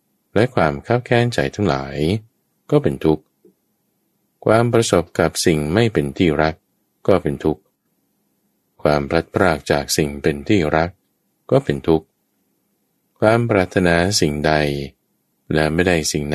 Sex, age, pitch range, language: male, 20-39, 70-95 Hz, Thai